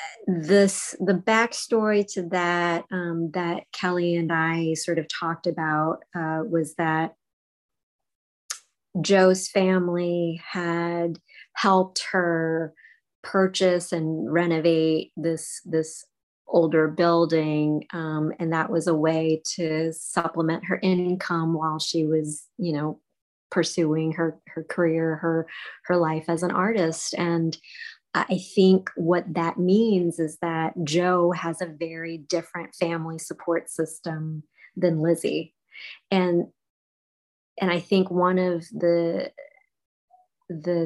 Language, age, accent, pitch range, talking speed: English, 30-49, American, 160-180 Hz, 115 wpm